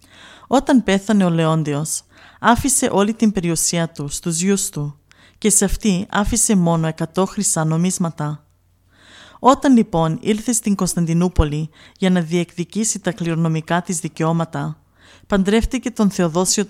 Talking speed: 125 wpm